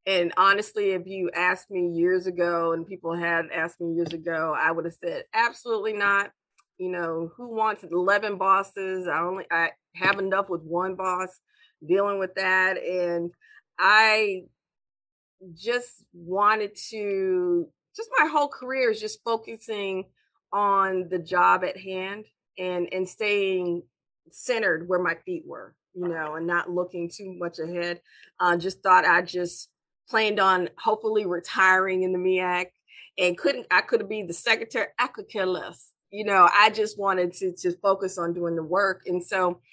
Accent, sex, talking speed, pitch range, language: American, female, 165 wpm, 175-210 Hz, English